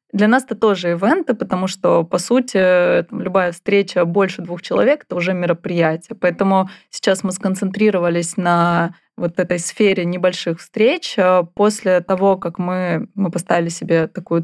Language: Russian